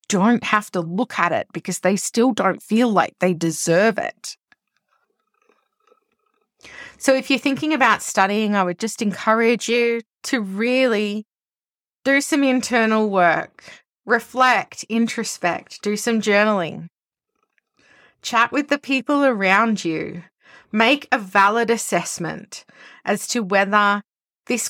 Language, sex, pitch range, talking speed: English, female, 185-235 Hz, 125 wpm